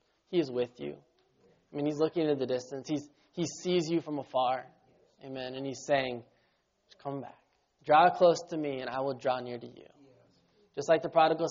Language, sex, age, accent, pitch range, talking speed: English, male, 20-39, American, 130-160 Hz, 200 wpm